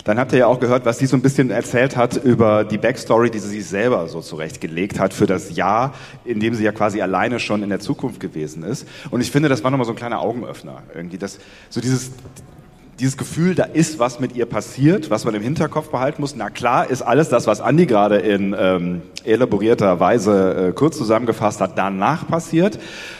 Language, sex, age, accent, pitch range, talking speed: German, male, 30-49, German, 105-130 Hz, 220 wpm